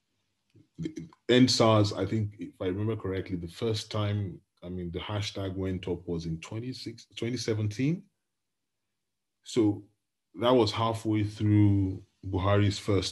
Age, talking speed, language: 30-49, 125 wpm, English